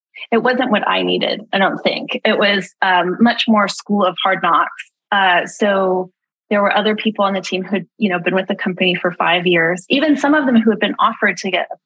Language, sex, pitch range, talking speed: English, female, 190-225 Hz, 235 wpm